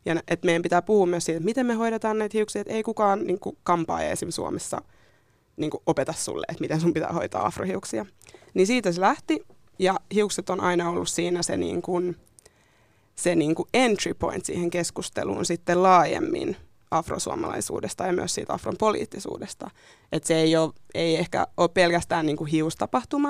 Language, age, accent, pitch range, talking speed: Finnish, 20-39, native, 165-205 Hz, 175 wpm